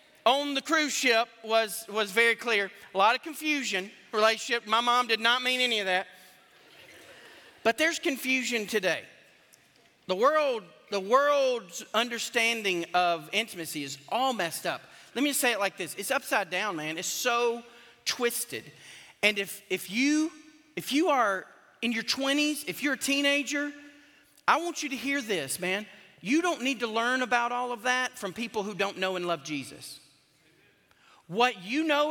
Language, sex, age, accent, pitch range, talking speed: English, male, 40-59, American, 200-265 Hz, 170 wpm